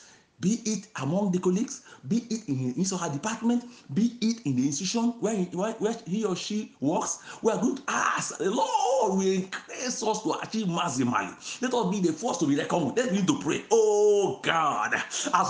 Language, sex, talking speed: English, male, 210 wpm